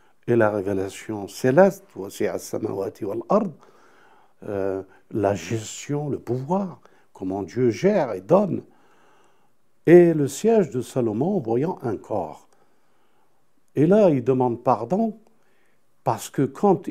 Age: 60-79